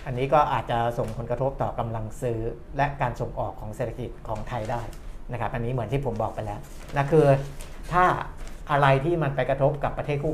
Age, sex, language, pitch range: 60-79, male, Thai, 115-145 Hz